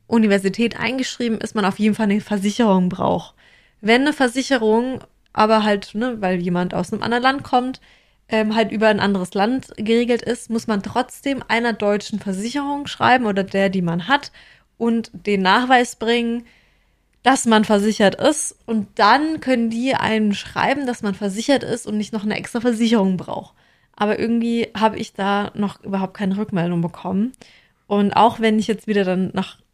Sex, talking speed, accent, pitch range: female, 170 wpm, German, 205-245 Hz